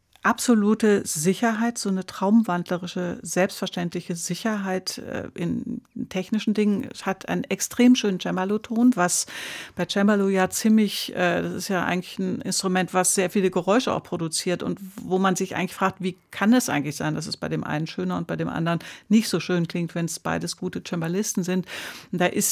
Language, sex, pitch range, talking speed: German, female, 180-215 Hz, 180 wpm